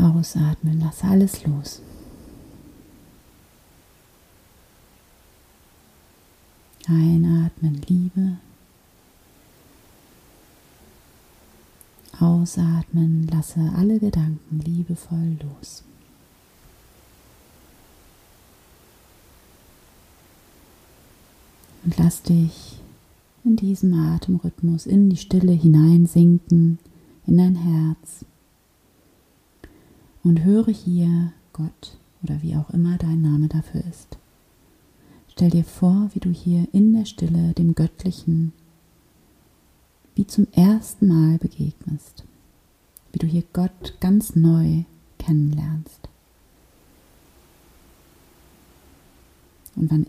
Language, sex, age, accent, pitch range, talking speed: German, female, 30-49, German, 150-175 Hz, 75 wpm